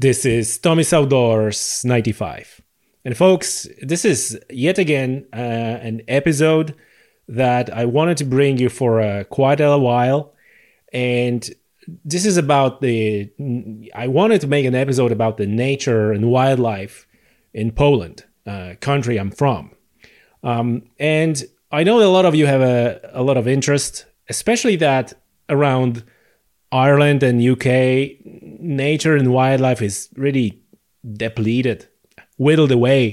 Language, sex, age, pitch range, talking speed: English, male, 30-49, 115-150 Hz, 135 wpm